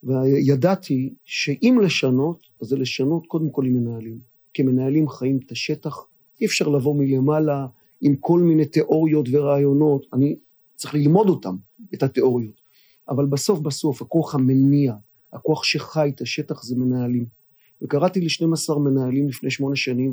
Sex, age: male, 40-59